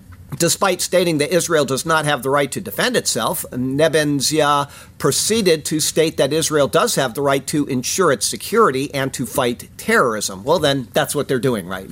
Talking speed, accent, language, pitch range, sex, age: 185 wpm, American, English, 120-165 Hz, male, 50-69